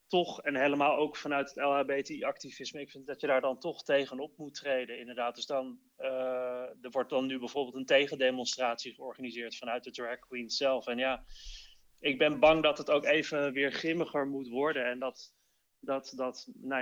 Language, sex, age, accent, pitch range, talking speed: Dutch, male, 20-39, Dutch, 125-140 Hz, 185 wpm